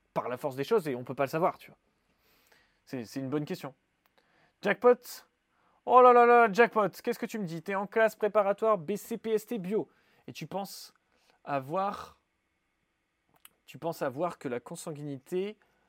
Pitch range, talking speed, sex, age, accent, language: 135-180 Hz, 175 wpm, male, 20-39, French, French